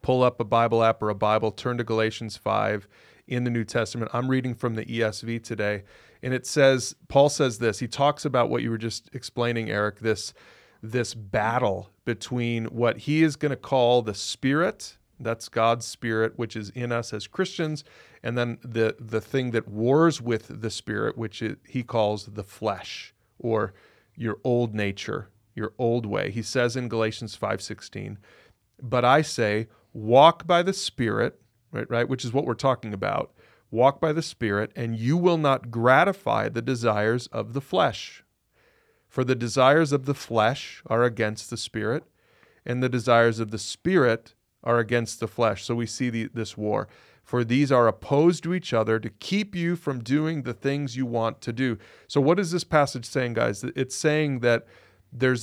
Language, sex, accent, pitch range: English, male, American, 110-130 Hz